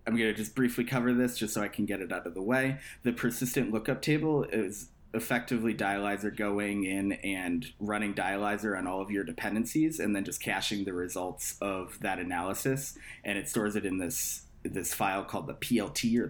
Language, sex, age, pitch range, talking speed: English, male, 20-39, 100-125 Hz, 205 wpm